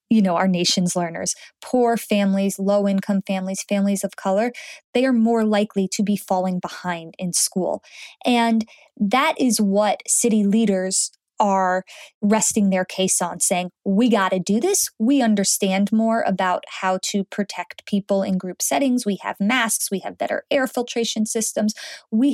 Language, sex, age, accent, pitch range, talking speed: English, female, 20-39, American, 195-240 Hz, 160 wpm